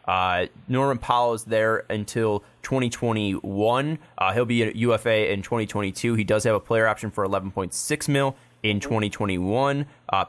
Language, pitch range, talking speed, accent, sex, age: English, 105-130 Hz, 150 wpm, American, male, 20-39